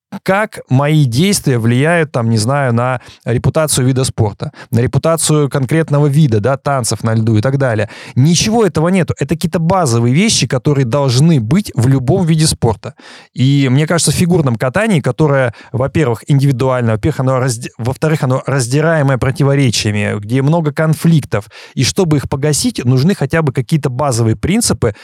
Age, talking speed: 20-39, 150 wpm